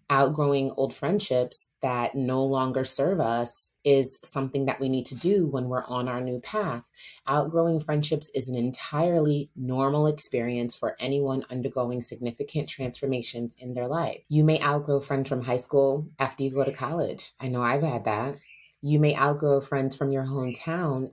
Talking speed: 170 wpm